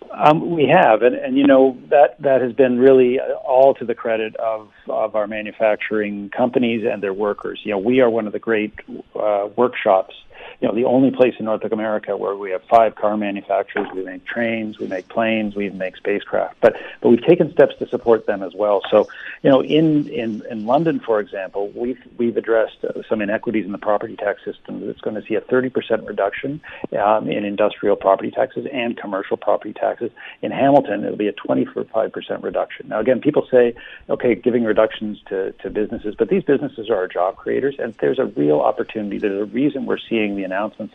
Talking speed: 205 wpm